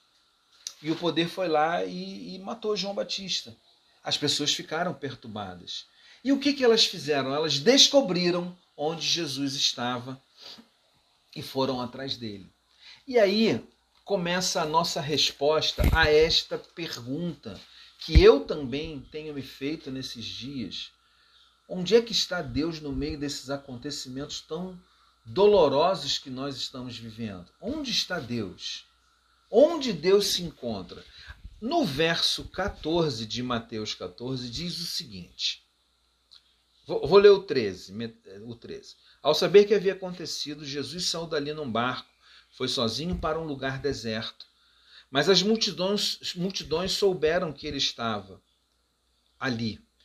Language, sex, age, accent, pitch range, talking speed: Portuguese, male, 40-59, Brazilian, 125-190 Hz, 130 wpm